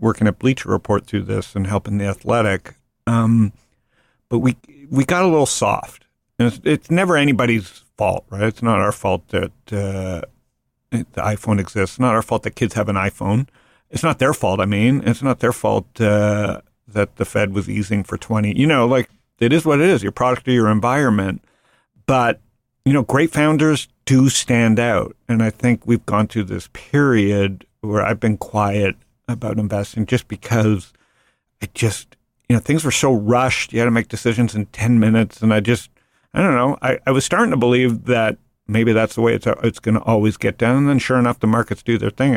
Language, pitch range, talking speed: English, 105-125 Hz, 210 wpm